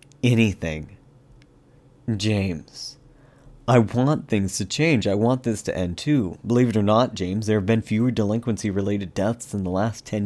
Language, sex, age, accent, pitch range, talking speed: English, male, 30-49, American, 105-125 Hz, 170 wpm